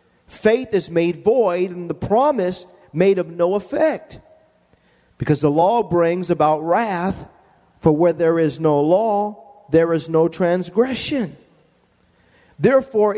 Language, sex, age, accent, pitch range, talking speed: English, male, 50-69, American, 140-175 Hz, 125 wpm